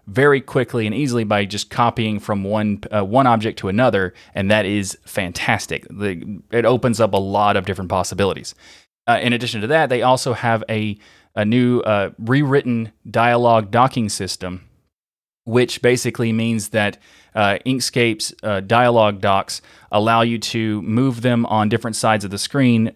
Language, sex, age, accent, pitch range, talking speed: English, male, 30-49, American, 105-125 Hz, 160 wpm